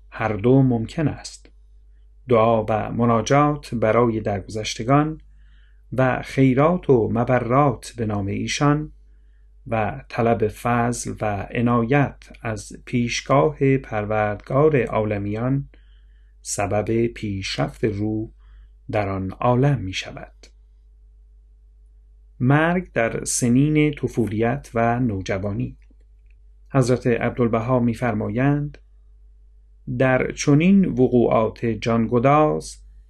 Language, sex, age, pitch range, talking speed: Persian, male, 40-59, 95-135 Hz, 85 wpm